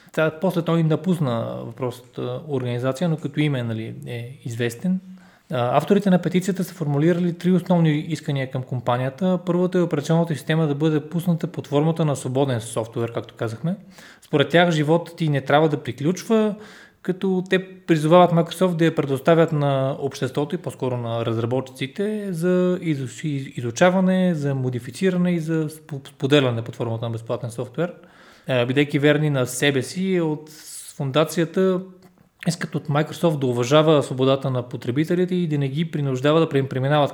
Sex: male